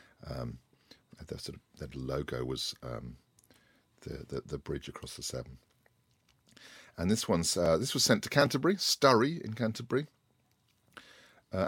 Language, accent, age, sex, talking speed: English, British, 50-69, male, 130 wpm